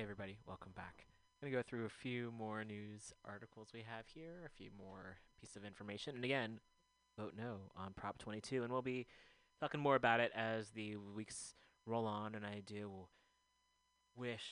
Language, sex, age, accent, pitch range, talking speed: English, male, 30-49, American, 100-125 Hz, 180 wpm